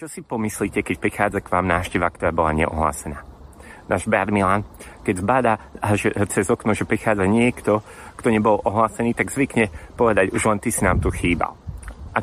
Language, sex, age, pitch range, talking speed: Slovak, male, 30-49, 90-115 Hz, 175 wpm